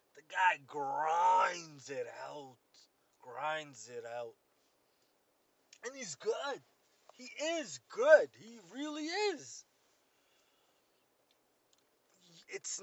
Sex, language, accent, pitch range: male, English, American, 140-210 Hz